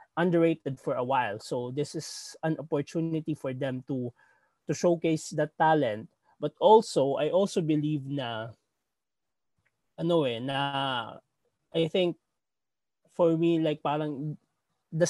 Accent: Filipino